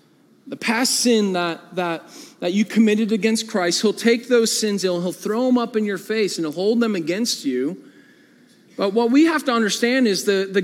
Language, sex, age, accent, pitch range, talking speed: English, male, 40-59, American, 195-270 Hz, 210 wpm